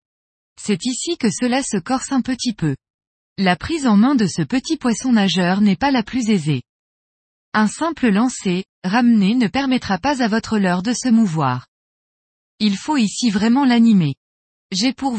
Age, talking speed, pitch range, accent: 20-39, 165 wpm, 185-255 Hz, French